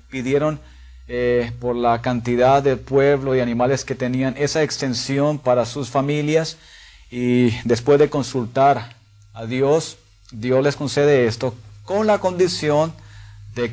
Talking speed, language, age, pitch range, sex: 130 wpm, Spanish, 40-59, 120-140 Hz, male